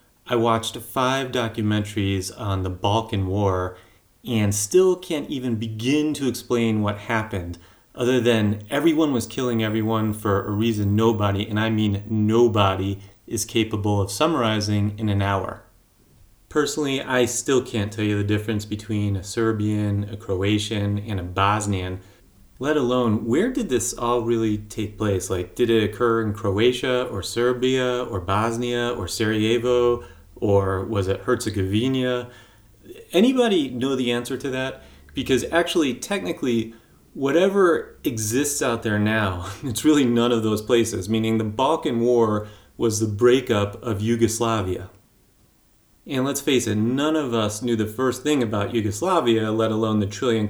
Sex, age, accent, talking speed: male, 30-49, American, 150 wpm